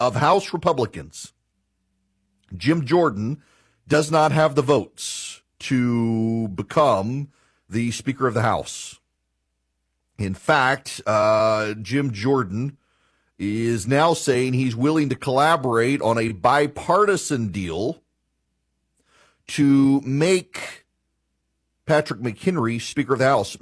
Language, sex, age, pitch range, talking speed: English, male, 50-69, 95-140 Hz, 105 wpm